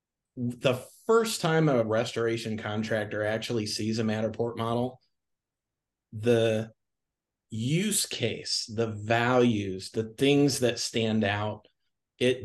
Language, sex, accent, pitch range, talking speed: English, male, American, 105-115 Hz, 105 wpm